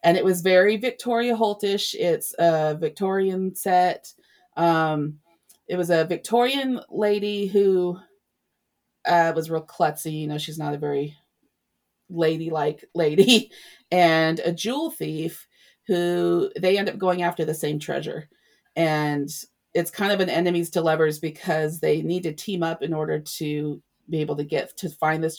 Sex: female